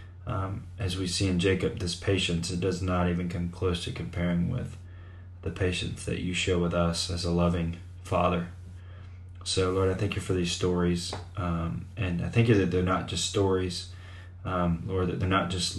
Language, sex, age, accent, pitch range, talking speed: English, male, 20-39, American, 90-95 Hz, 200 wpm